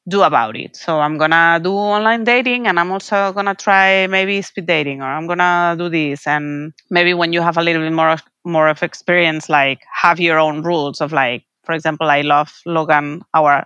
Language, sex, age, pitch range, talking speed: English, female, 30-49, 155-200 Hz, 205 wpm